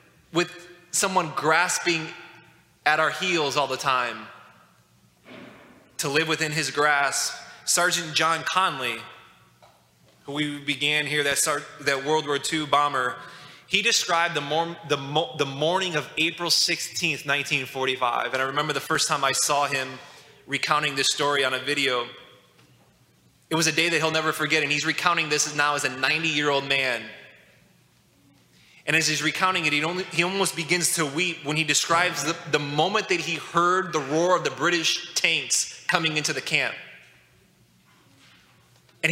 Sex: male